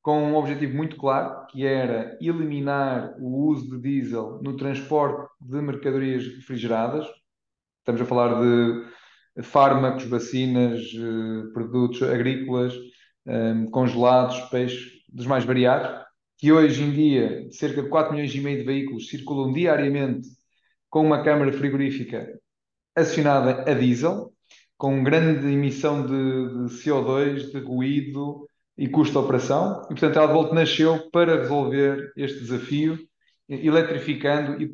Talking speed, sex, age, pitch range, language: 130 wpm, male, 20-39, 125-150 Hz, Portuguese